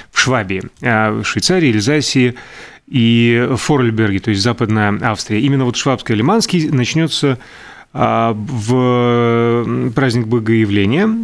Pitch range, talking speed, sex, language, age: 110-135 Hz, 85 wpm, male, Russian, 30-49